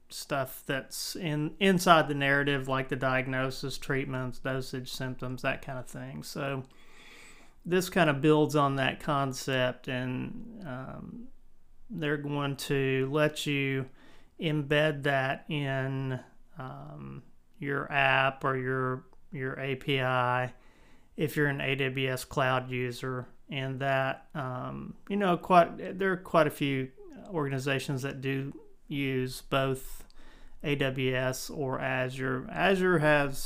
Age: 40-59